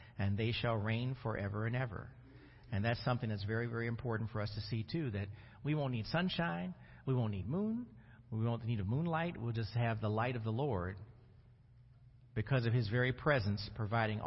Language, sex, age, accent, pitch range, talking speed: English, male, 50-69, American, 115-140 Hz, 200 wpm